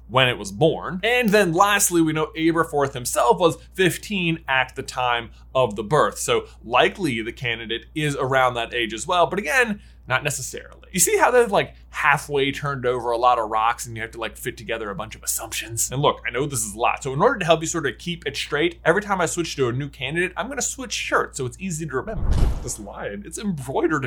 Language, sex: English, male